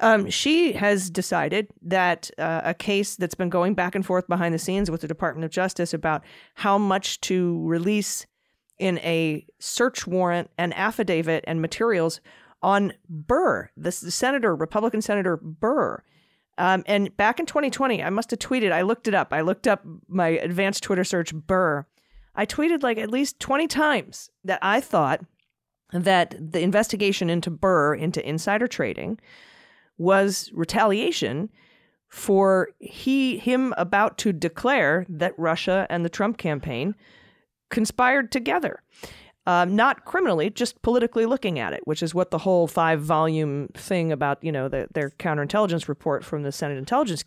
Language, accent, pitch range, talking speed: English, American, 170-220 Hz, 155 wpm